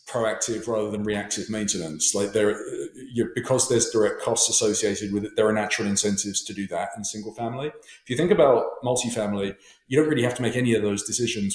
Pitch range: 105-125 Hz